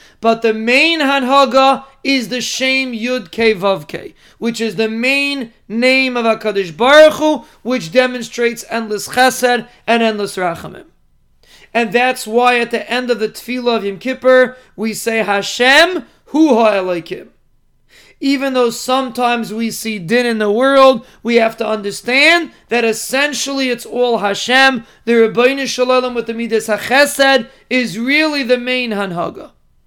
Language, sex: English, male